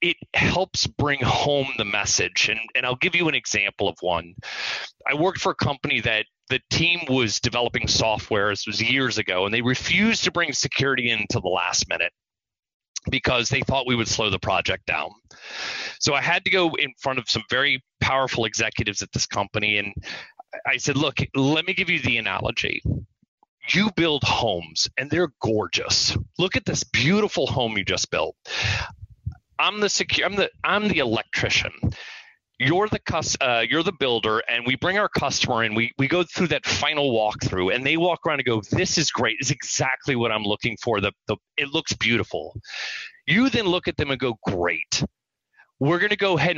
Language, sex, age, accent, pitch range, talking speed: English, male, 30-49, American, 110-155 Hz, 180 wpm